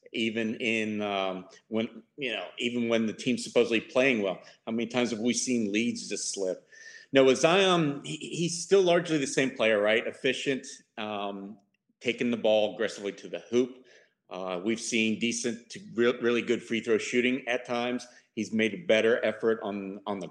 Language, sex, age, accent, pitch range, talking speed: English, male, 40-59, American, 105-135 Hz, 185 wpm